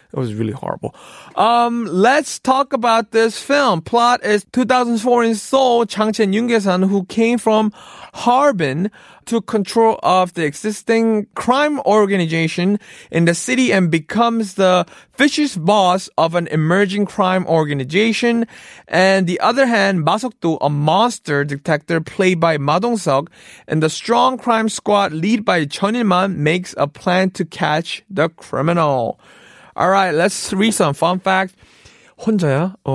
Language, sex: Korean, male